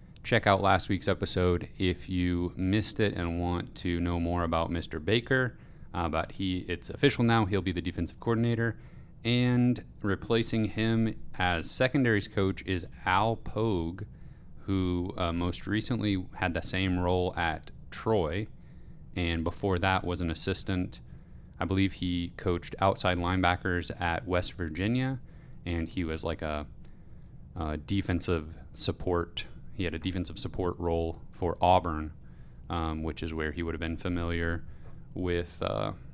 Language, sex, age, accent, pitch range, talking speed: English, male, 30-49, American, 85-100 Hz, 150 wpm